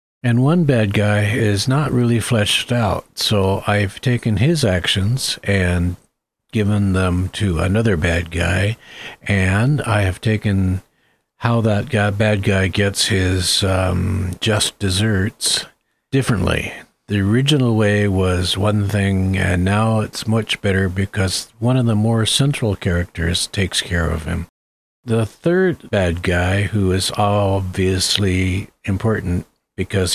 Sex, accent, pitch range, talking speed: male, American, 90-110 Hz, 130 wpm